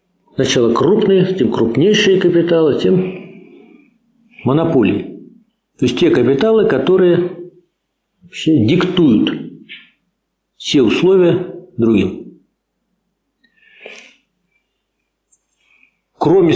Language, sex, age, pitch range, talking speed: Russian, male, 50-69, 155-220 Hz, 60 wpm